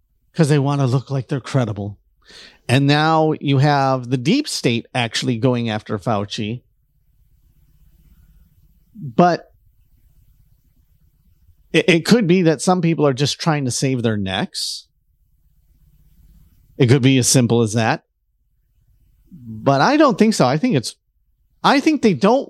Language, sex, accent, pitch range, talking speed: English, male, American, 110-165 Hz, 135 wpm